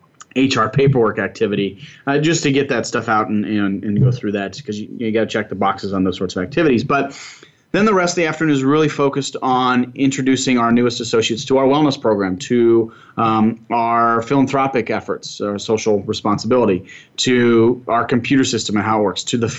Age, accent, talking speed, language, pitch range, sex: 30-49, American, 200 wpm, English, 115-140 Hz, male